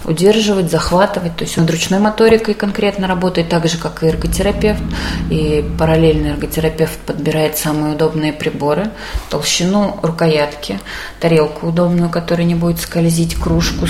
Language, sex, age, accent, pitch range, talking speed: Russian, female, 20-39, native, 150-195 Hz, 130 wpm